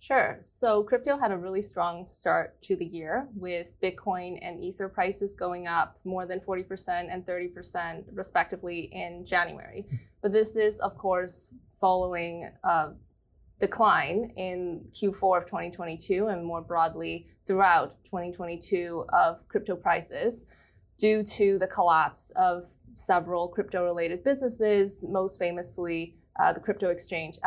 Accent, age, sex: American, 20-39, female